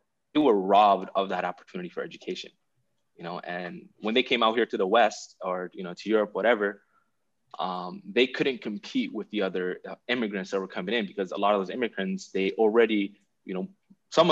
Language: English